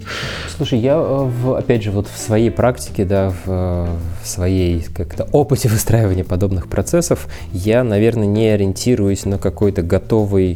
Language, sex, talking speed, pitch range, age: Russian, male, 140 wpm, 95-120 Hz, 20-39